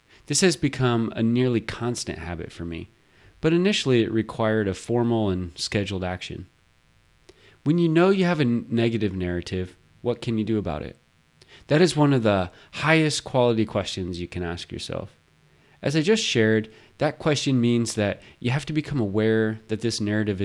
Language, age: English, 30-49